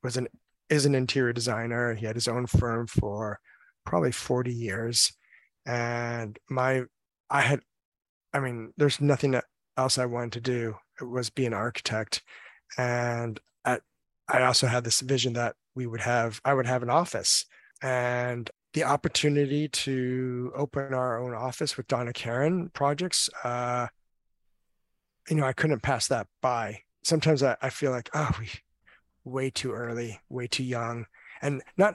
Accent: American